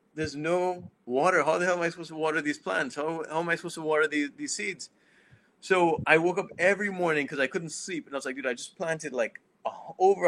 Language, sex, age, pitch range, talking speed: English, male, 20-39, 120-155 Hz, 250 wpm